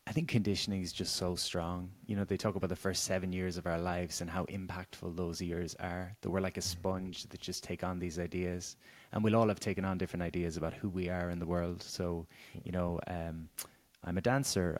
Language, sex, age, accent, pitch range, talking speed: English, male, 20-39, Irish, 90-105 Hz, 235 wpm